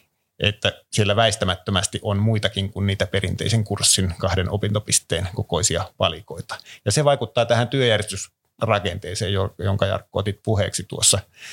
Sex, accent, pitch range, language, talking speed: male, native, 100-115 Hz, Finnish, 120 wpm